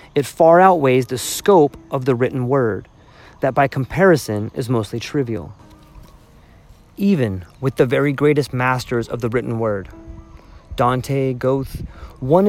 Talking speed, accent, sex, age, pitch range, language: 135 wpm, American, male, 30-49, 115-160 Hz, English